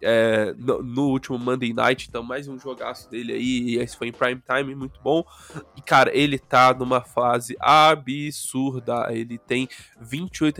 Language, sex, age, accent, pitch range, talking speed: Portuguese, male, 10-29, Brazilian, 120-145 Hz, 170 wpm